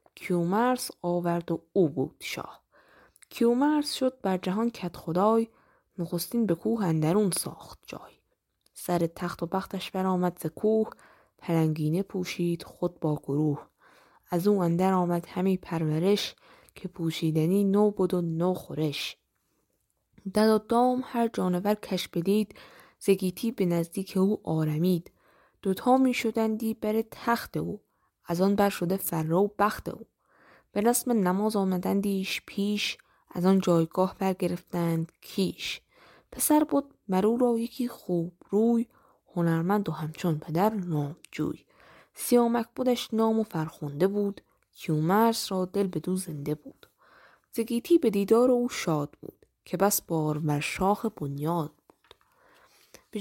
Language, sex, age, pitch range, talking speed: Persian, female, 10-29, 170-220 Hz, 135 wpm